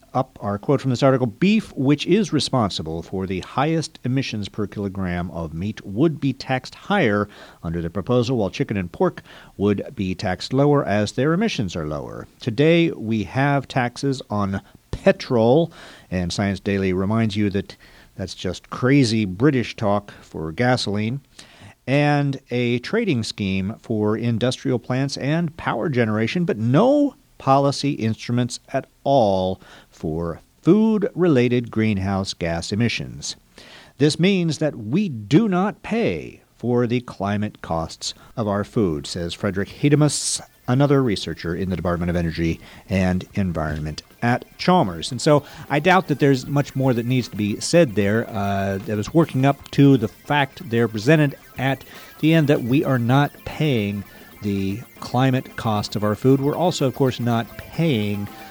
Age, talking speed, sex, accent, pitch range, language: 50-69, 155 wpm, male, American, 100-140 Hz, English